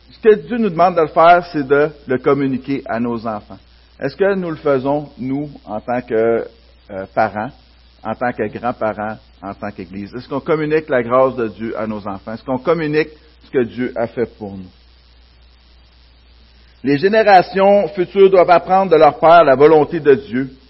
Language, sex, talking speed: French, male, 190 wpm